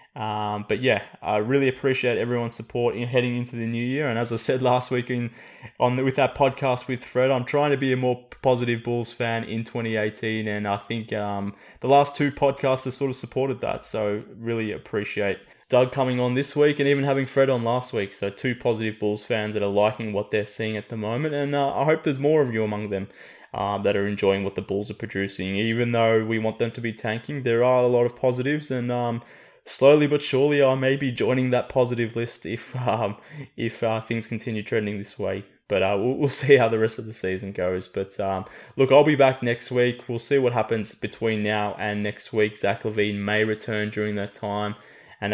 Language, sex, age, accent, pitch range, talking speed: English, male, 20-39, Australian, 100-125 Hz, 230 wpm